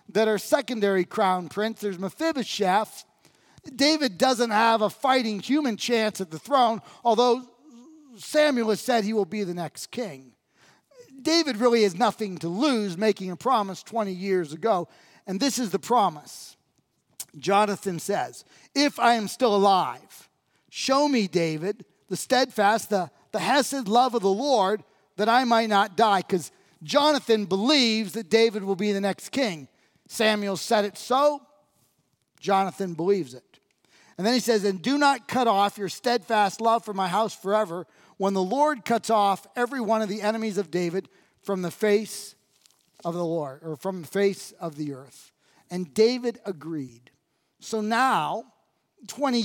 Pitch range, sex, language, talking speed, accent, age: 195-245 Hz, male, English, 160 wpm, American, 40-59